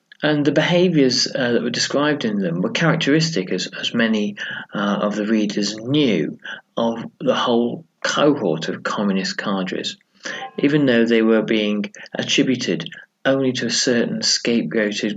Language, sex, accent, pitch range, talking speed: English, male, British, 105-150 Hz, 140 wpm